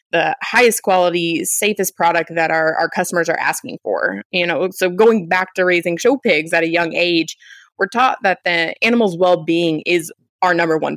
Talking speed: 190 wpm